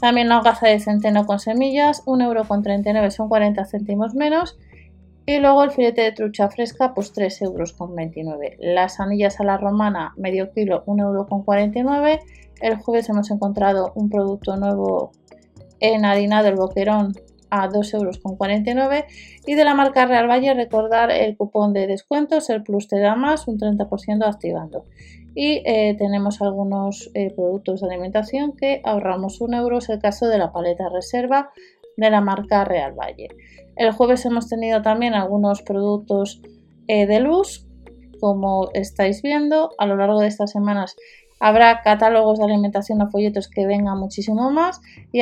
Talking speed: 155 wpm